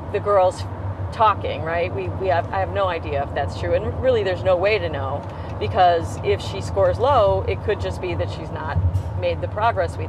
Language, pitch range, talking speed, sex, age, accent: English, 90-100 Hz, 215 wpm, female, 40-59, American